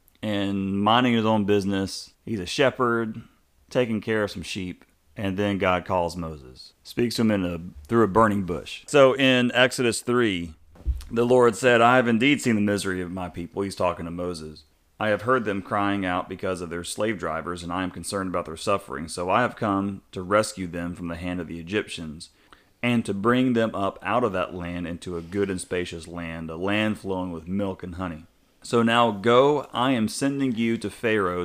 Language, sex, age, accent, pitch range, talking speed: English, male, 30-49, American, 90-115 Hz, 210 wpm